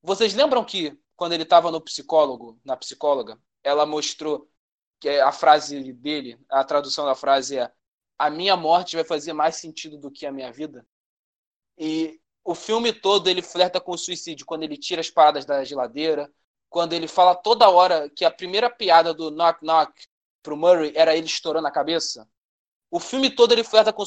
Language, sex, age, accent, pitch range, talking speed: Portuguese, male, 20-39, Brazilian, 160-225 Hz, 185 wpm